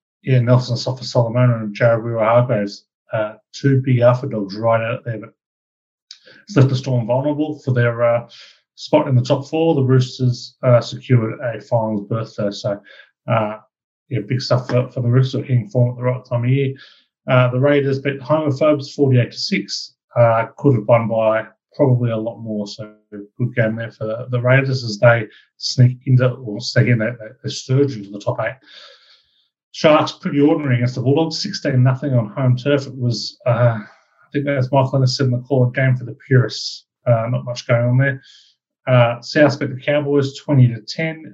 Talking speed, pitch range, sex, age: 190 wpm, 120-135 Hz, male, 30-49